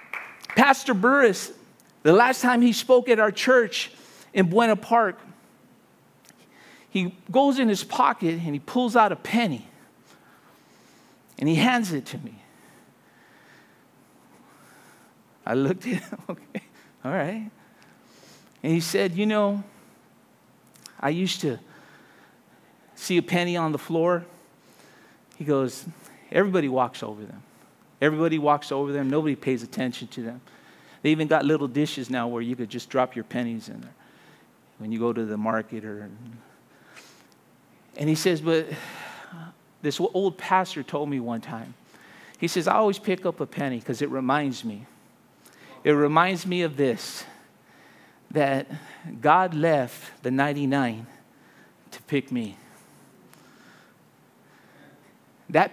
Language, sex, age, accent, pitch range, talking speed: English, male, 40-59, American, 135-195 Hz, 135 wpm